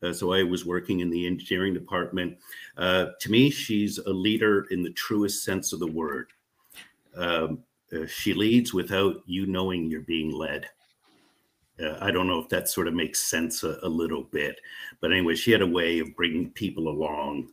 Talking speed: 190 wpm